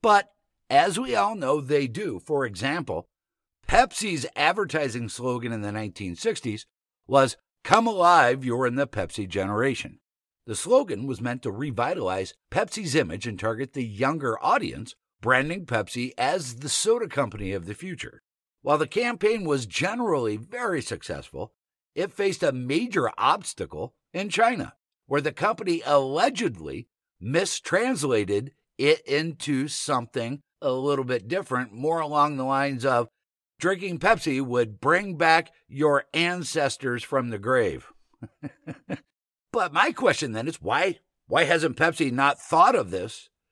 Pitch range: 125-175 Hz